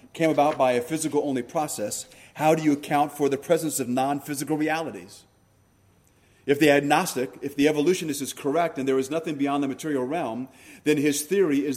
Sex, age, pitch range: male, 30-49, 130-175 Hz